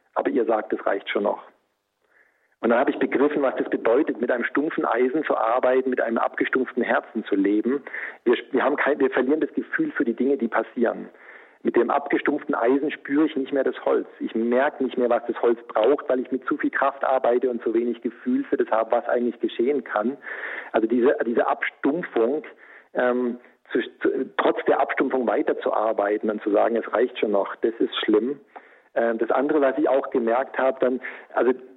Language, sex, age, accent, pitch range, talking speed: German, male, 50-69, German, 120-145 Hz, 200 wpm